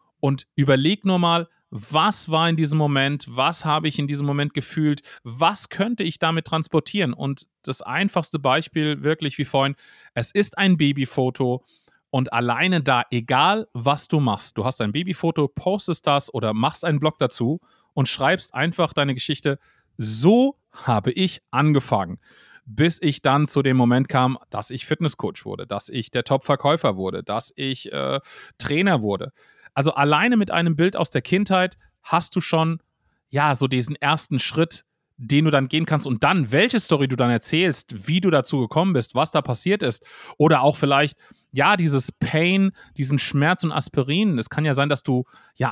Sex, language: male, German